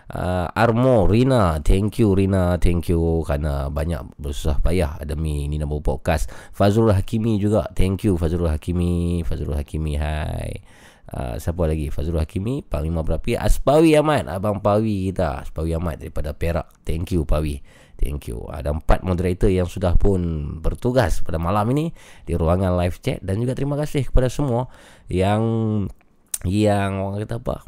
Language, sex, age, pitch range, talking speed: Malay, male, 20-39, 85-120 Hz, 155 wpm